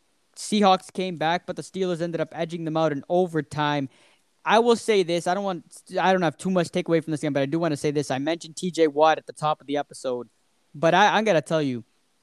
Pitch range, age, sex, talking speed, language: 160-215 Hz, 20-39, male, 255 wpm, English